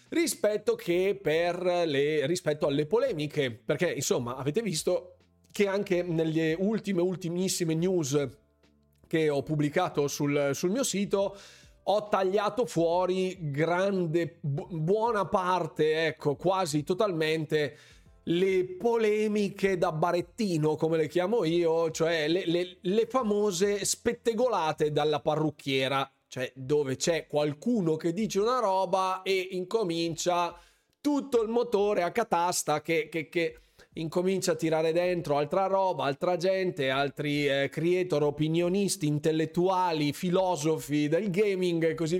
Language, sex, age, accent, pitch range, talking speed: Italian, male, 30-49, native, 150-190 Hz, 120 wpm